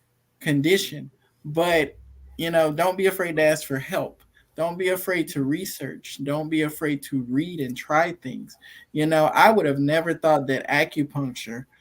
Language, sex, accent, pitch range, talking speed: English, male, American, 135-165 Hz, 170 wpm